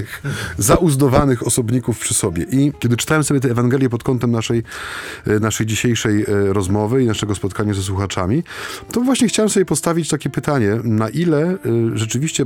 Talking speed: 150 wpm